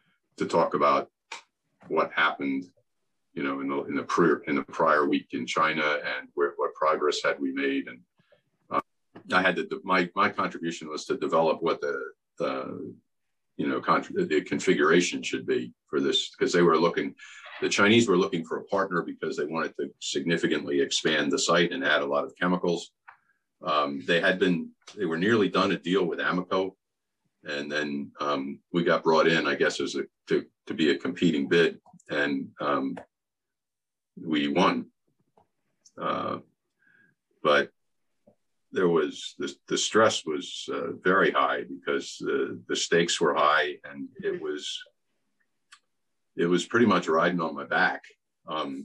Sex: male